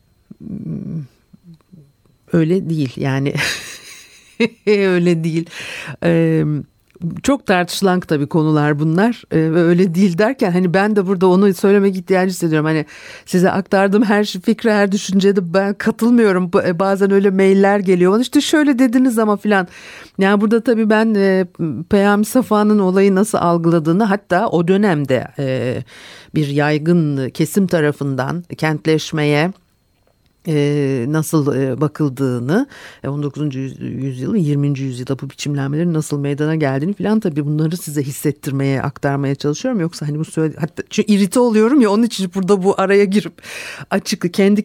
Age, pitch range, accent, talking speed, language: 50-69, 155-200 Hz, native, 130 wpm, Turkish